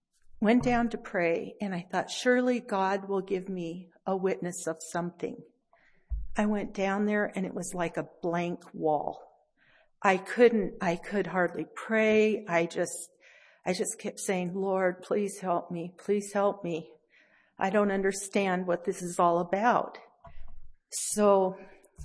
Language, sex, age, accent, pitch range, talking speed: English, female, 50-69, American, 175-205 Hz, 150 wpm